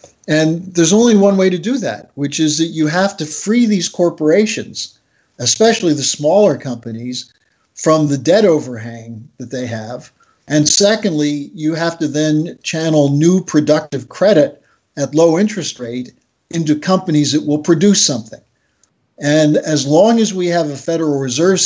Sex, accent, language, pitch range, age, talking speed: male, American, English, 140-165 Hz, 50-69, 160 wpm